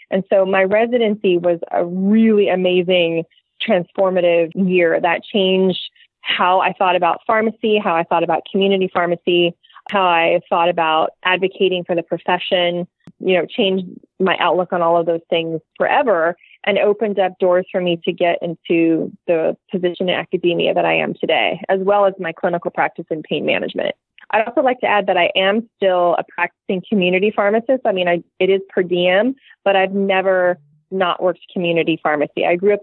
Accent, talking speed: American, 175 wpm